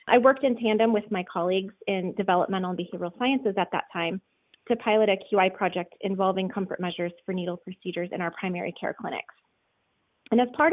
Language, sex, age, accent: English, female, 20-39, American